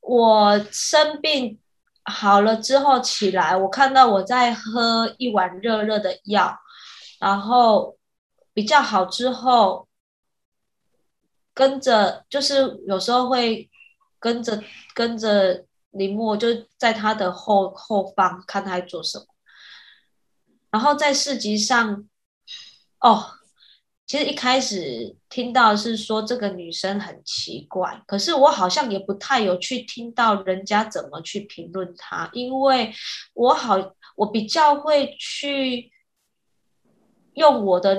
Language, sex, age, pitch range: Chinese, female, 20-39, 200-255 Hz